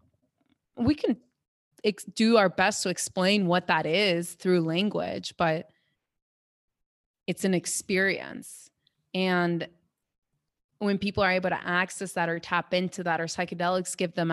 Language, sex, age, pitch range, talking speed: English, female, 20-39, 165-190 Hz, 140 wpm